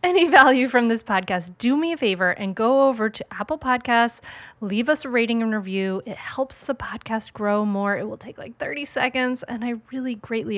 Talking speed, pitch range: 210 wpm, 200-255 Hz